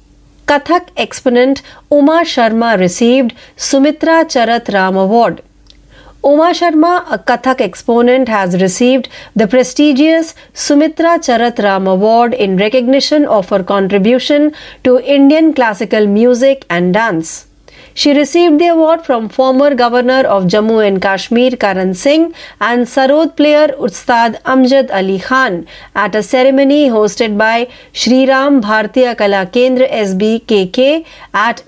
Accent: native